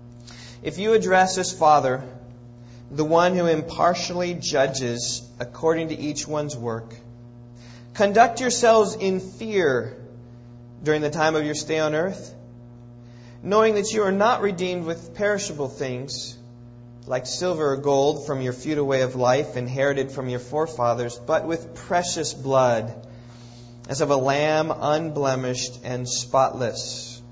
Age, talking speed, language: 30-49, 135 wpm, English